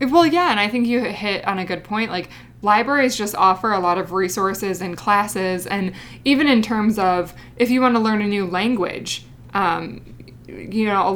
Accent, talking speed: American, 205 wpm